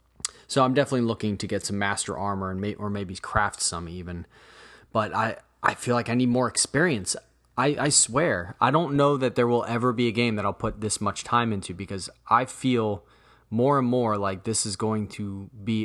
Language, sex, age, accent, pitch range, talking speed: English, male, 20-39, American, 95-120 Hz, 215 wpm